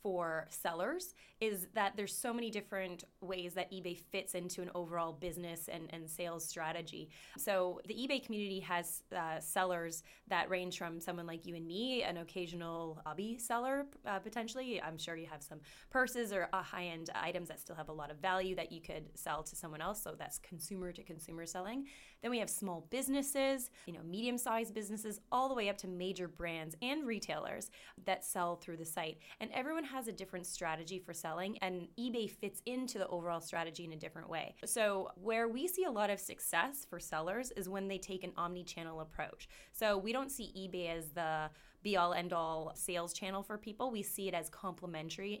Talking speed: 200 wpm